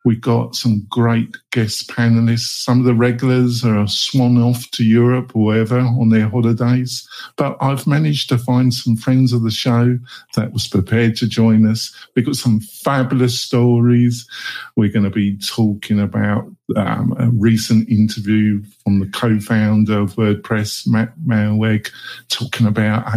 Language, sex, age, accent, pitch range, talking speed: English, male, 50-69, British, 110-130 Hz, 160 wpm